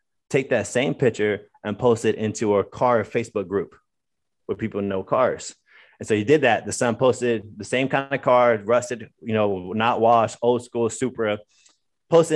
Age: 20-39